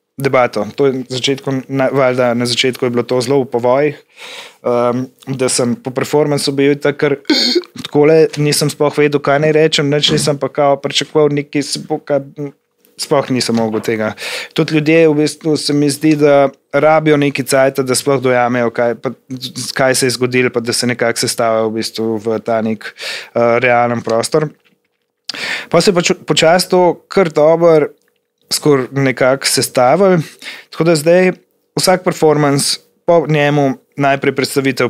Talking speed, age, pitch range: 140 wpm, 20-39, 125-155 Hz